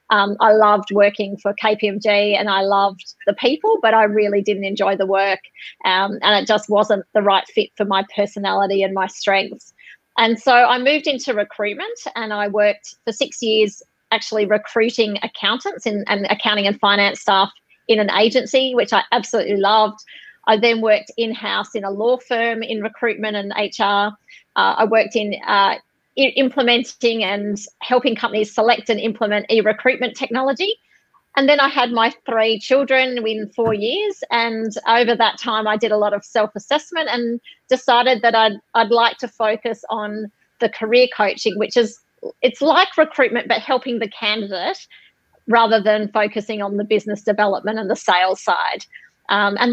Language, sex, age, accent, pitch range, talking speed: English, female, 30-49, Australian, 205-240 Hz, 170 wpm